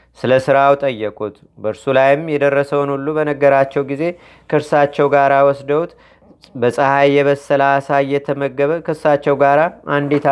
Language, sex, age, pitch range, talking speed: Amharic, male, 30-49, 130-145 Hz, 105 wpm